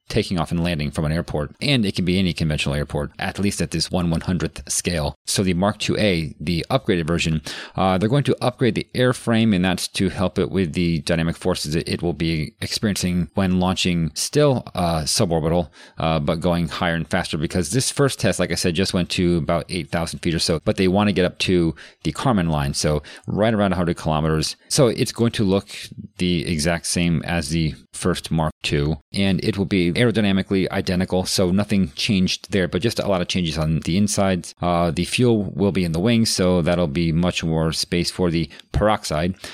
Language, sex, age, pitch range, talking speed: English, male, 40-59, 80-95 Hz, 210 wpm